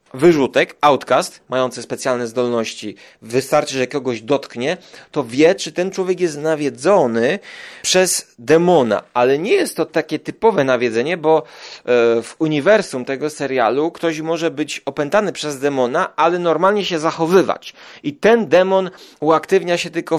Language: Polish